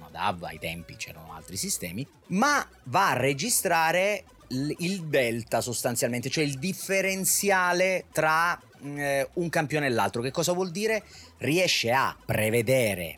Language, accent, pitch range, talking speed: Italian, native, 100-145 Hz, 125 wpm